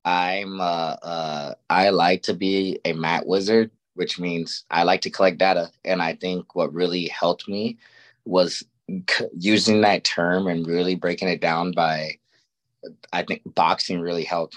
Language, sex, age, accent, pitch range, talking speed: English, male, 20-39, American, 85-100 Hz, 170 wpm